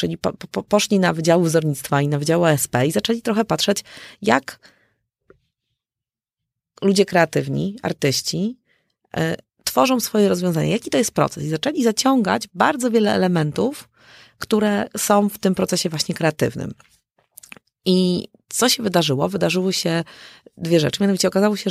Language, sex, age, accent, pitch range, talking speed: Polish, female, 30-49, native, 160-205 Hz, 140 wpm